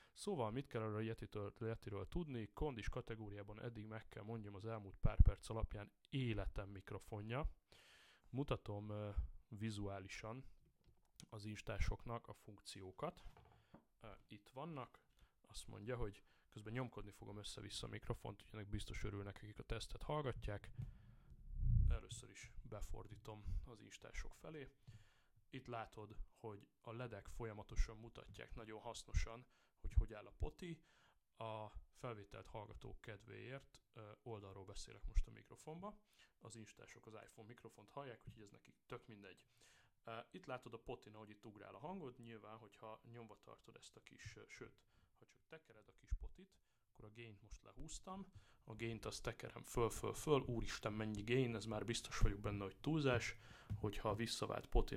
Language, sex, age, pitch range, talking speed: Hungarian, male, 30-49, 105-120 Hz, 145 wpm